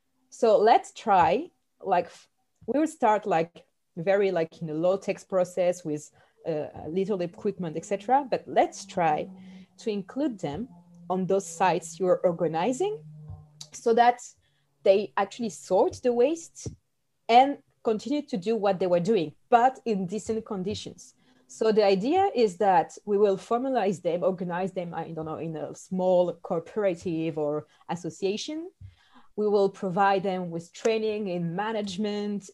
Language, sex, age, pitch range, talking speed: English, female, 30-49, 175-230 Hz, 145 wpm